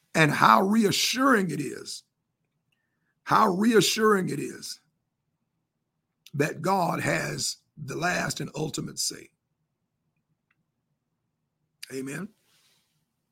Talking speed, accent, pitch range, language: 80 wpm, American, 150-185 Hz, English